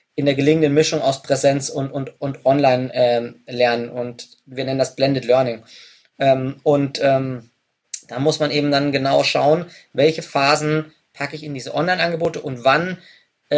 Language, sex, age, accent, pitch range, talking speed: German, male, 20-39, German, 140-160 Hz, 165 wpm